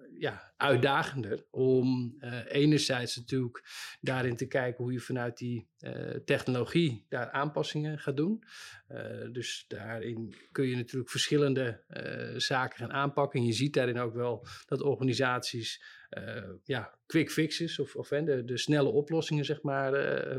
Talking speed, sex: 150 wpm, male